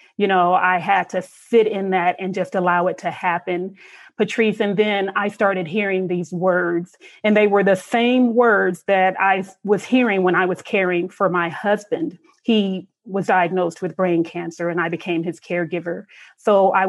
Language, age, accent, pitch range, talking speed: English, 30-49, American, 180-210 Hz, 185 wpm